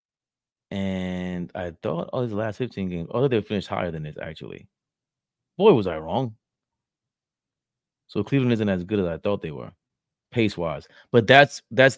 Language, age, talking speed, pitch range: English, 30-49, 180 wpm, 105-140 Hz